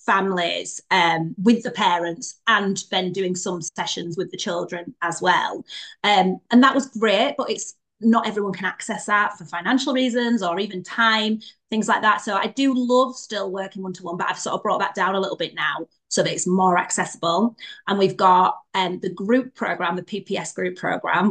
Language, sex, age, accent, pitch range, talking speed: English, female, 30-49, British, 185-235 Hz, 195 wpm